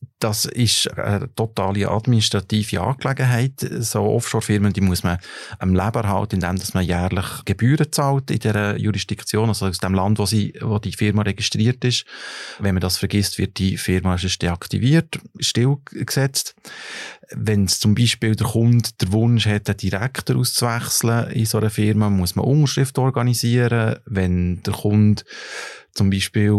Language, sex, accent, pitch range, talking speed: German, male, Austrian, 100-120 Hz, 150 wpm